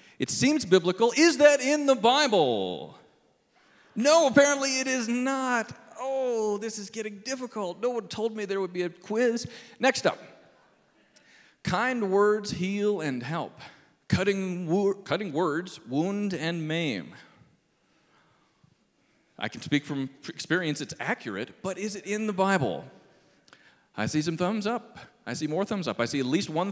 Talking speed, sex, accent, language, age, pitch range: 155 wpm, male, American, English, 40-59, 165-240 Hz